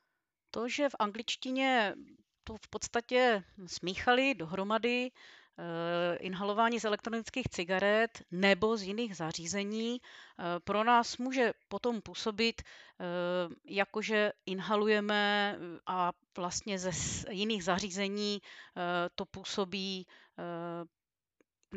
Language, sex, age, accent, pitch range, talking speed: Czech, female, 30-49, native, 175-210 Hz, 100 wpm